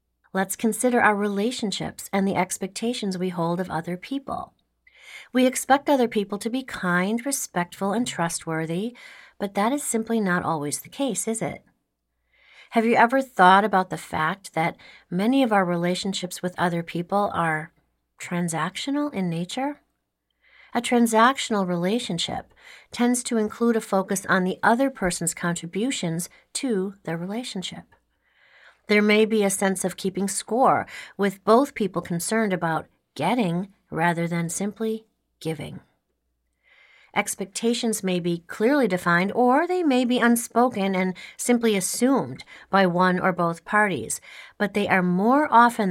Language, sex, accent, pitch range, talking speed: English, female, American, 175-230 Hz, 140 wpm